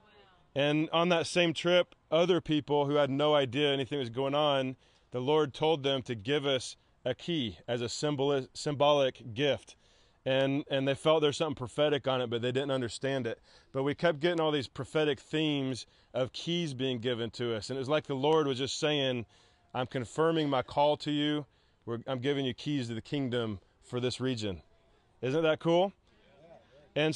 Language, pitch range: English, 130-155 Hz